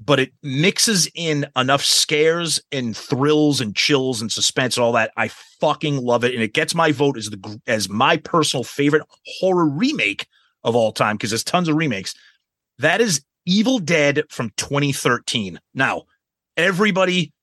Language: English